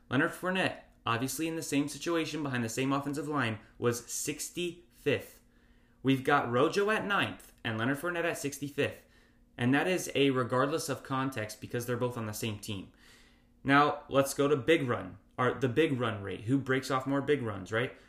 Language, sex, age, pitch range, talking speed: English, male, 20-39, 115-150 Hz, 185 wpm